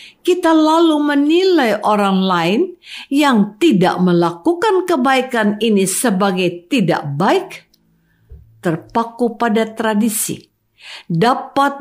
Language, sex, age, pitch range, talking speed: Indonesian, female, 50-69, 195-315 Hz, 85 wpm